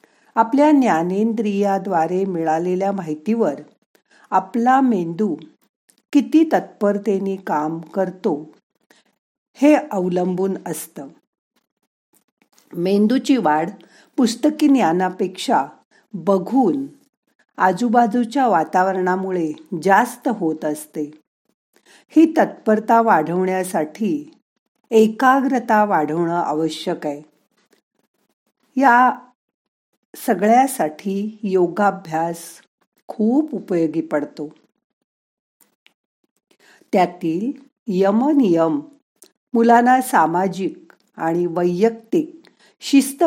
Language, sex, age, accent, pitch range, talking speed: Marathi, female, 50-69, native, 175-250 Hz, 60 wpm